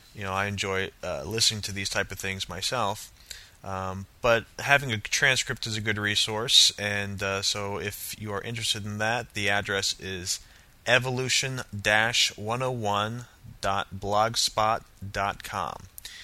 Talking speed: 125 wpm